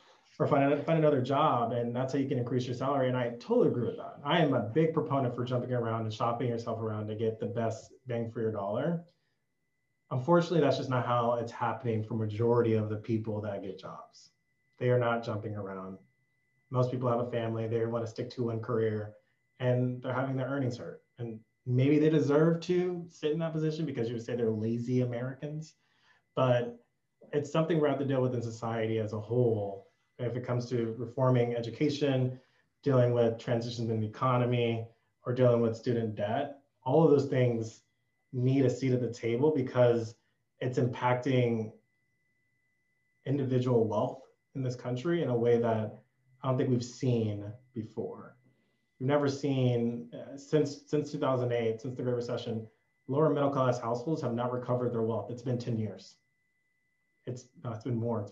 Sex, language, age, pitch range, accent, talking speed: male, English, 30-49, 115-135 Hz, American, 185 wpm